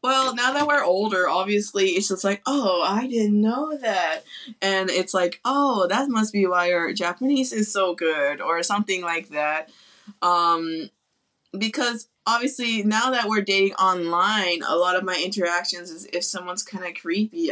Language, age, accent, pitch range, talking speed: English, 20-39, American, 165-220 Hz, 170 wpm